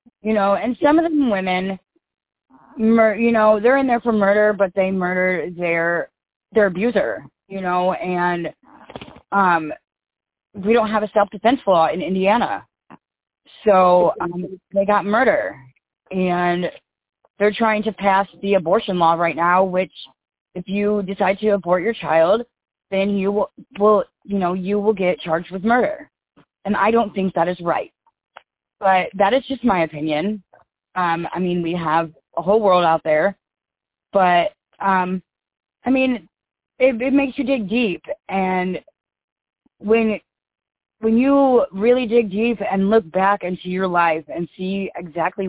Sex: female